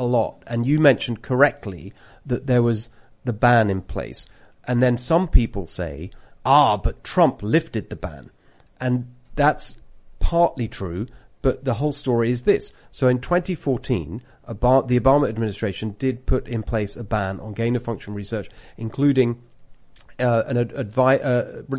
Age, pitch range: 40-59, 110-135 Hz